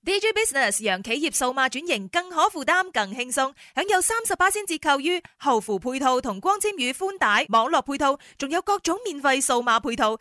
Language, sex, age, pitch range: Chinese, female, 20-39, 220-335 Hz